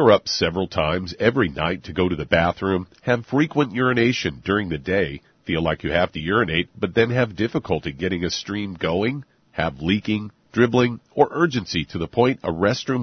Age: 50-69